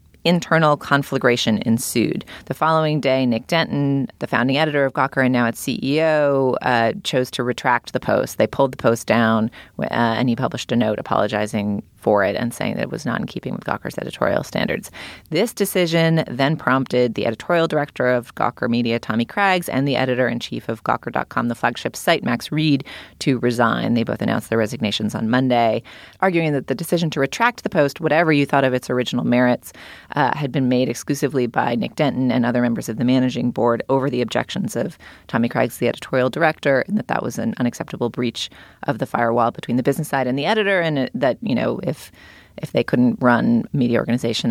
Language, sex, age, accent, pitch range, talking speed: English, female, 30-49, American, 120-155 Hz, 200 wpm